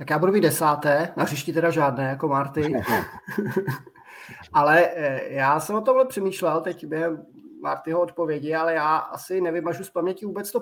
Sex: male